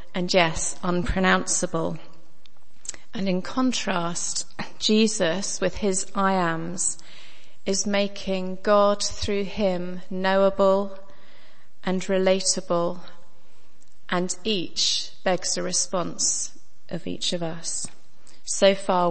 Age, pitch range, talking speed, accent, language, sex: 30-49, 170-190 Hz, 95 wpm, British, English, female